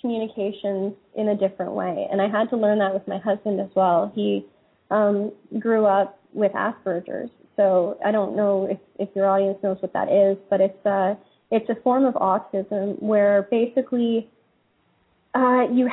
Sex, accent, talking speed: female, American, 175 wpm